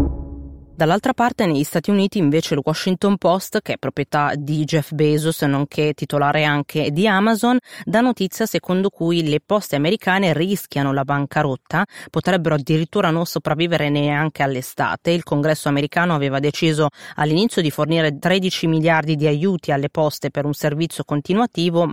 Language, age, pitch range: Italian, 30-49, 145-170 Hz